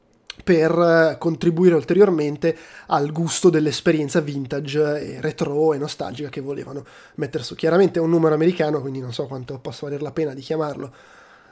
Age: 20-39